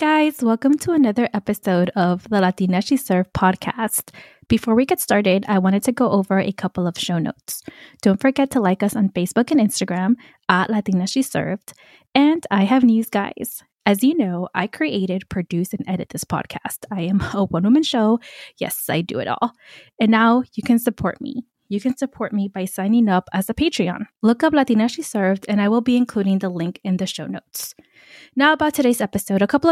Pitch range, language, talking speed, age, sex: 185-245 Hz, English, 205 wpm, 20-39, female